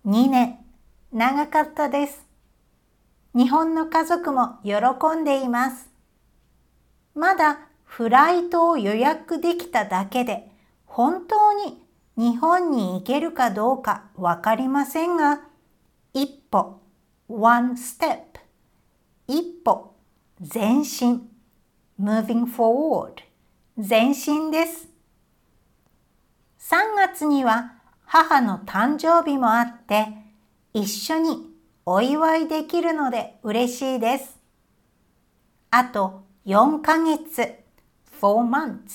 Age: 60-79